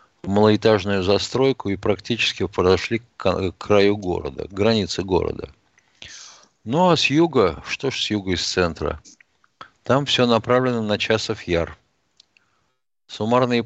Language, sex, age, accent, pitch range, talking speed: Russian, male, 50-69, native, 90-115 Hz, 125 wpm